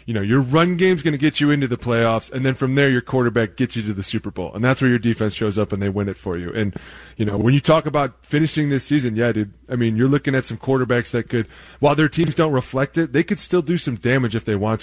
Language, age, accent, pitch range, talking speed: English, 20-39, American, 115-150 Hz, 295 wpm